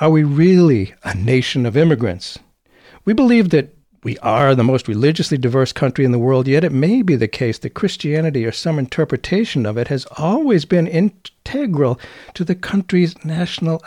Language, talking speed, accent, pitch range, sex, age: English, 175 wpm, American, 120-160 Hz, male, 60-79